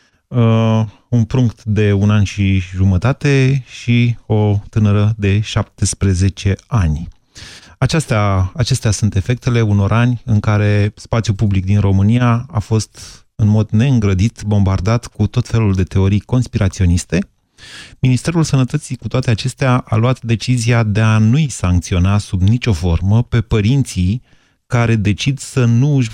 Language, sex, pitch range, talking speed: Romanian, male, 100-130 Hz, 140 wpm